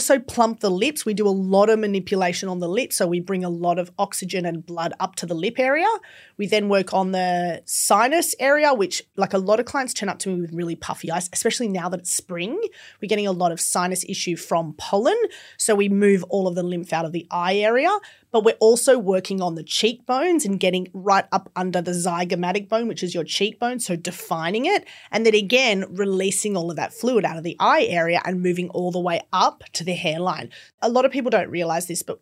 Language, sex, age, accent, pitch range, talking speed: English, female, 30-49, Australian, 180-225 Hz, 240 wpm